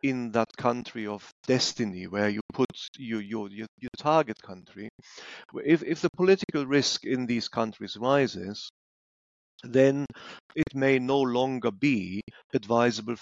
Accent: German